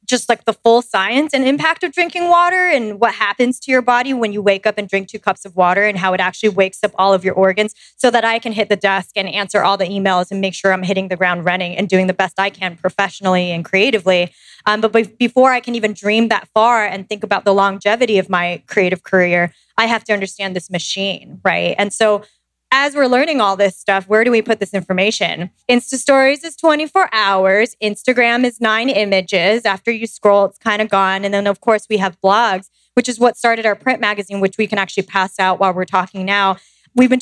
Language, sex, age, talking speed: English, female, 20-39, 235 wpm